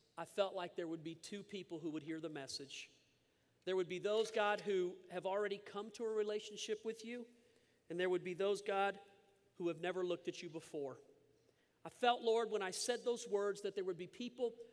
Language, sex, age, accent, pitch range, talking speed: English, male, 40-59, American, 175-220 Hz, 215 wpm